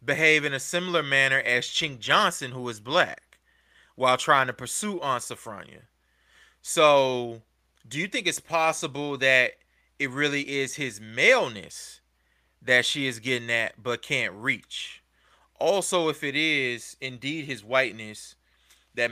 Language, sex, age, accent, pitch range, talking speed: English, male, 20-39, American, 115-140 Hz, 140 wpm